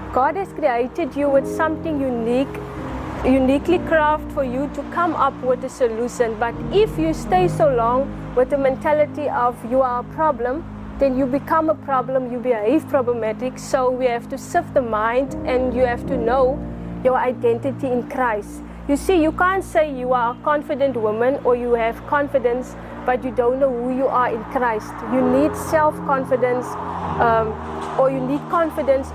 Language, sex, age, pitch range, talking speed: English, female, 30-49, 250-300 Hz, 175 wpm